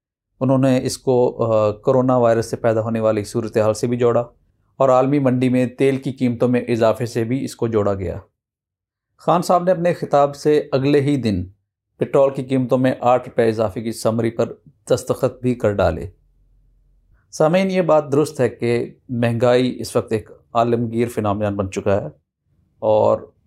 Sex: male